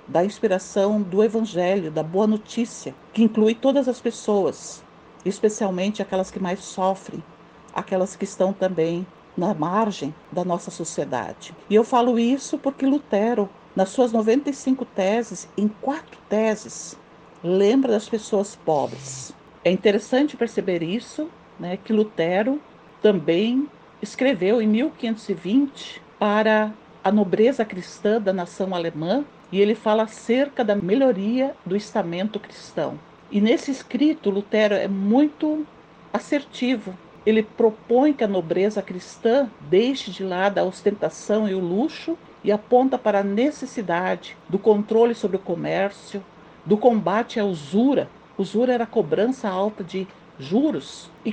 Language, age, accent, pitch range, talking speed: Portuguese, 50-69, Brazilian, 190-240 Hz, 130 wpm